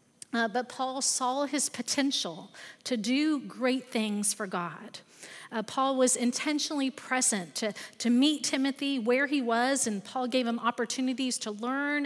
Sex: female